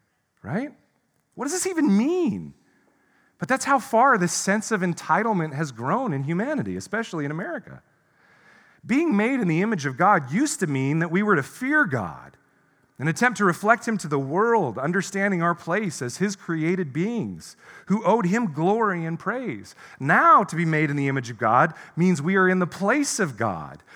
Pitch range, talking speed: 145-210 Hz, 190 wpm